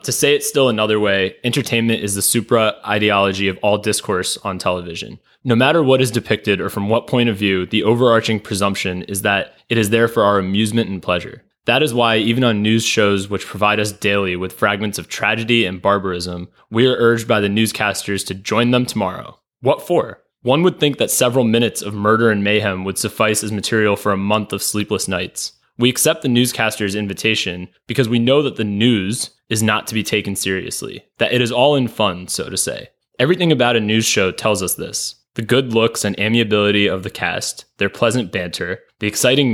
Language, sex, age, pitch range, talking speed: English, male, 20-39, 100-120 Hz, 205 wpm